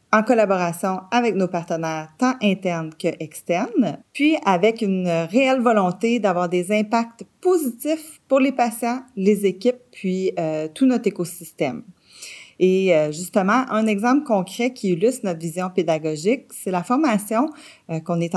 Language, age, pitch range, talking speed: French, 40-59, 170-240 Hz, 145 wpm